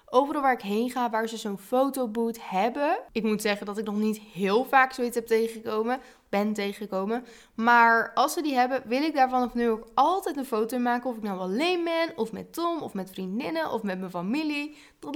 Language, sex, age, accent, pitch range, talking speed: Dutch, female, 20-39, Dutch, 210-270 Hz, 220 wpm